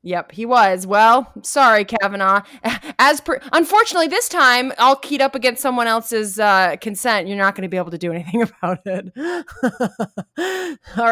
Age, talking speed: 20-39, 165 wpm